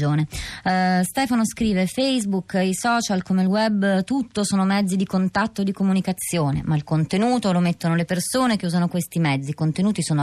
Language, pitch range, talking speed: Italian, 160-195 Hz, 175 wpm